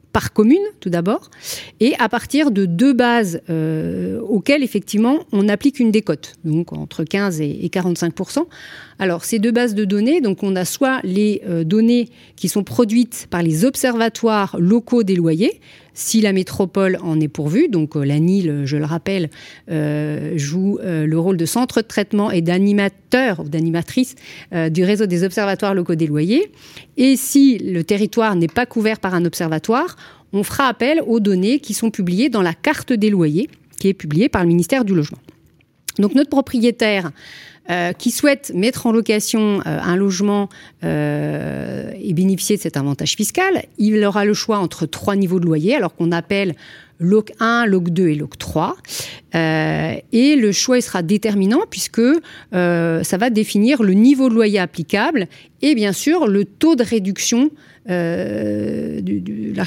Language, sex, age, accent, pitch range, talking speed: French, female, 40-59, French, 170-235 Hz, 170 wpm